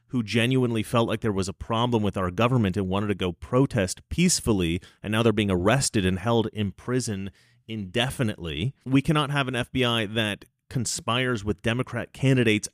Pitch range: 100-125 Hz